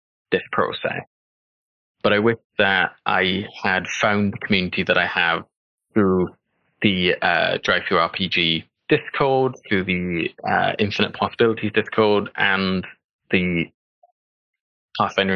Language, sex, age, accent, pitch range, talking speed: English, male, 20-39, British, 90-115 Hz, 115 wpm